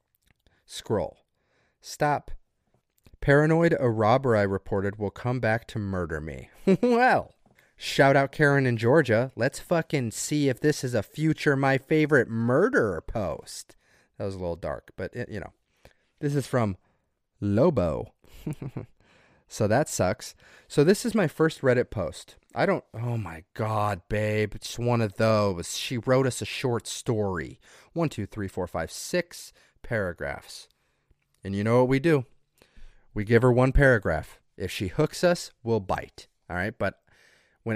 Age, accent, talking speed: 30-49, American, 155 wpm